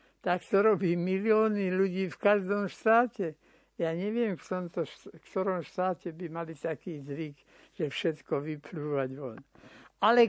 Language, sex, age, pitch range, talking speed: Slovak, male, 60-79, 175-220 Hz, 145 wpm